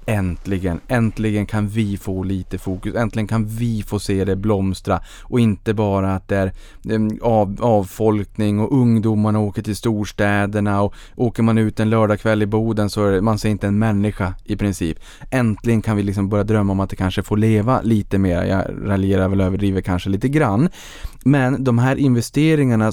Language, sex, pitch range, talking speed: Swedish, male, 100-120 Hz, 185 wpm